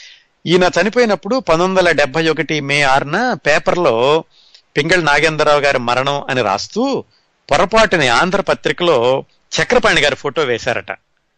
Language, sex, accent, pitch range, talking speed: Telugu, male, native, 130-165 Hz, 110 wpm